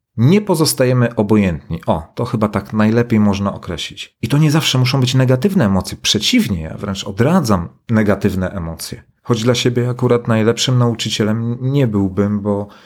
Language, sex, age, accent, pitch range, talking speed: Polish, male, 40-59, native, 105-135 Hz, 155 wpm